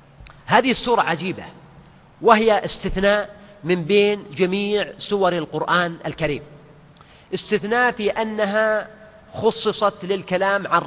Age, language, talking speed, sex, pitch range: 40-59, Arabic, 95 wpm, male, 165-205 Hz